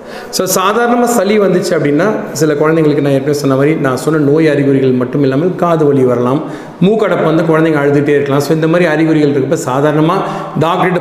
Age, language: 40-59, Tamil